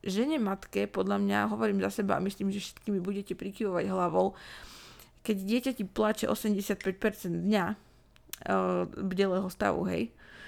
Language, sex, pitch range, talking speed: Slovak, female, 195-235 Hz, 145 wpm